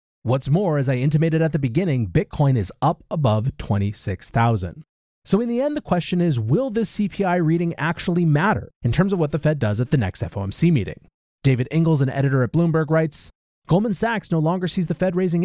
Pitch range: 125-170 Hz